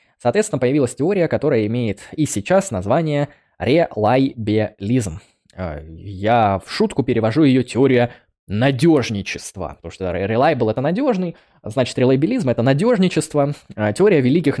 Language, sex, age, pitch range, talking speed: Russian, male, 20-39, 115-150 Hz, 110 wpm